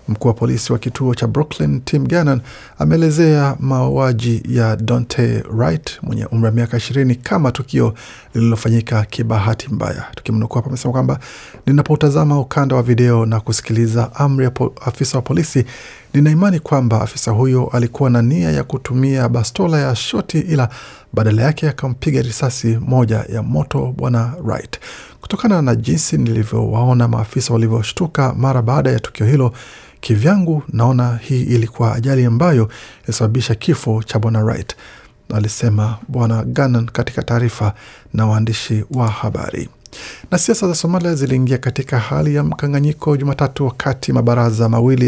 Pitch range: 115-140 Hz